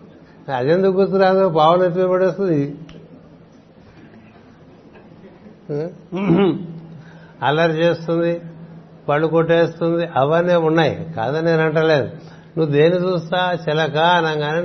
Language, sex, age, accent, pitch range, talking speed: Telugu, male, 60-79, native, 145-170 Hz, 75 wpm